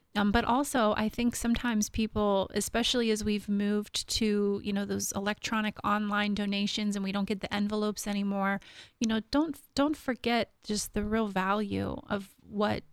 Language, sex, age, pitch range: English, female, 30-49, 195-215 Hz